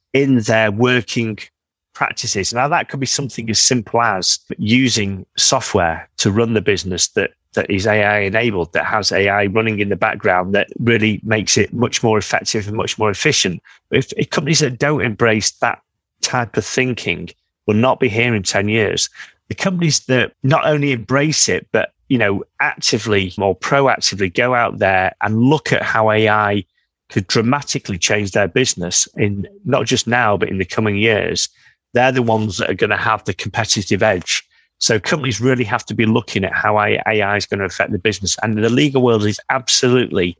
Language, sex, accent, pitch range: English, male, British, 105-125 Hz